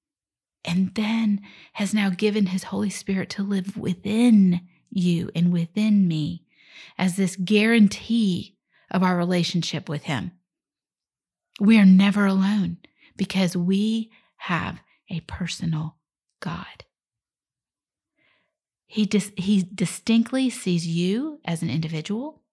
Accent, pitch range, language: American, 180-215 Hz, English